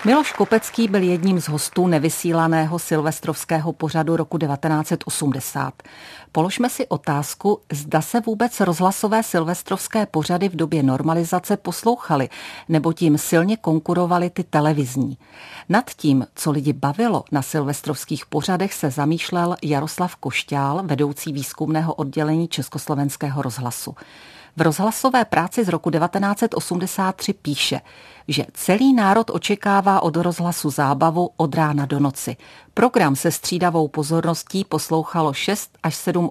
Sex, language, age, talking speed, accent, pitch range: female, Czech, 50-69, 120 wpm, native, 150-180 Hz